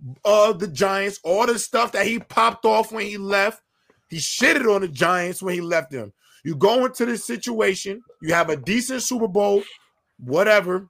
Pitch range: 170-225 Hz